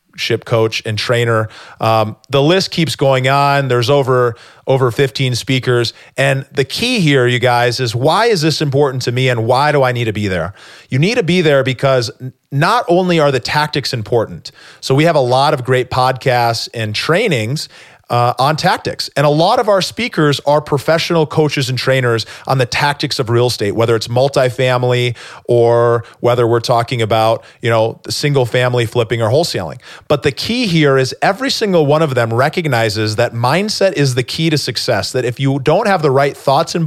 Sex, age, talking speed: male, 40-59, 200 wpm